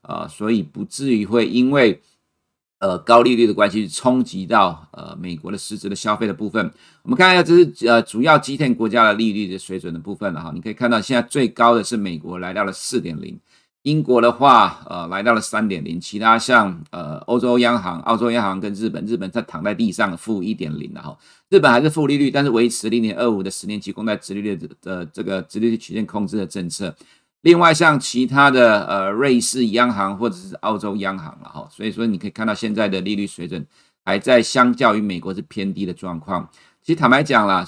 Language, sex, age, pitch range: Chinese, male, 50-69, 100-120 Hz